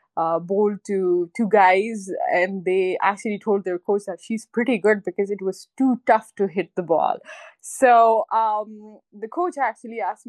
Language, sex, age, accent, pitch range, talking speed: English, female, 20-39, Indian, 195-240 Hz, 175 wpm